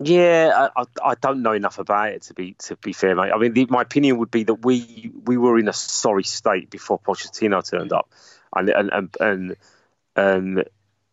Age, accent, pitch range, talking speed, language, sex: 30-49, British, 105-130 Hz, 205 wpm, English, male